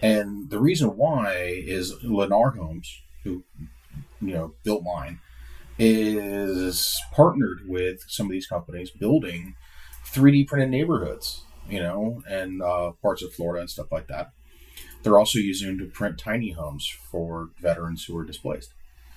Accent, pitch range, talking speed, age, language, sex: American, 70-100 Hz, 145 wpm, 30-49, English, male